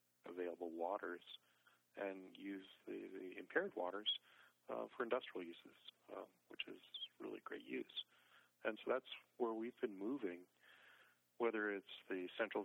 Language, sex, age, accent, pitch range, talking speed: English, male, 40-59, American, 90-100 Hz, 140 wpm